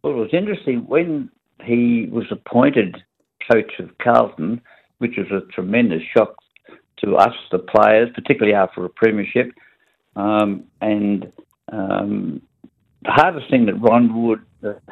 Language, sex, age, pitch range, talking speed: English, male, 60-79, 95-115 Hz, 135 wpm